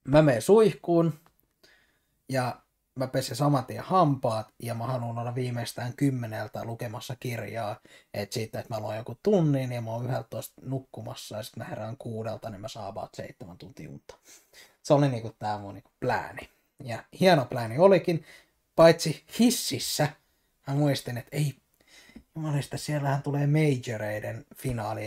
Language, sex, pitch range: Finnish, male, 115-150 Hz